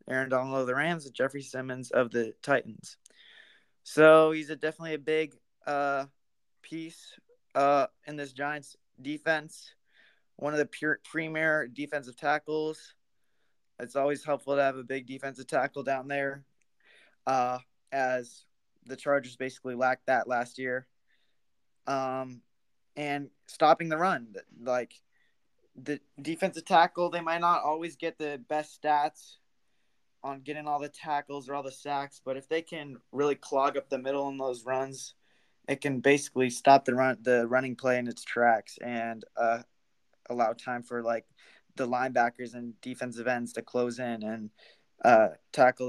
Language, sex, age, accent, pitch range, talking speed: English, male, 20-39, American, 125-150 Hz, 155 wpm